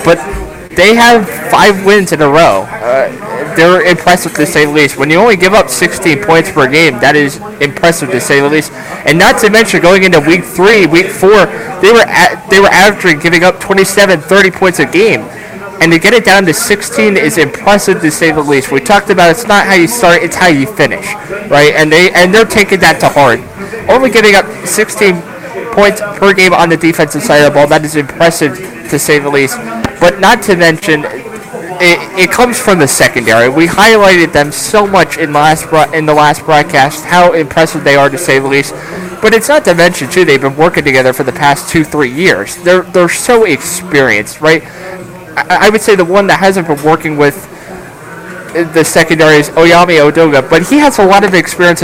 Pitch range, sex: 150-195 Hz, male